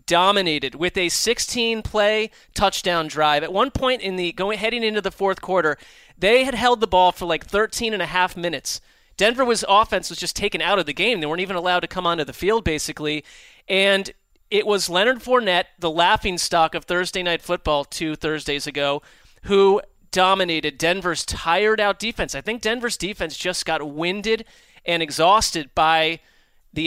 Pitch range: 165-210 Hz